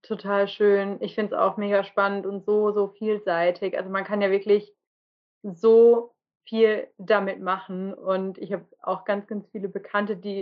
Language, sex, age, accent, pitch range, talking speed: German, female, 30-49, German, 205-235 Hz, 175 wpm